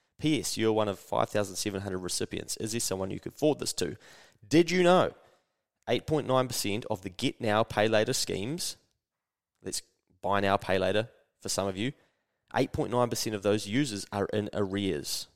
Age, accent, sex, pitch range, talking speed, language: 20-39, Australian, male, 100-140 Hz, 160 wpm, English